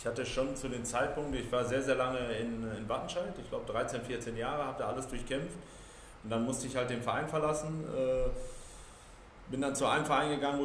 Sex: male